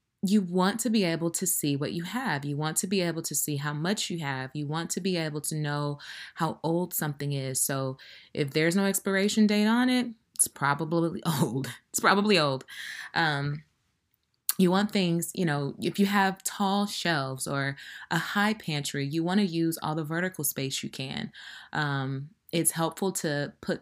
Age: 20-39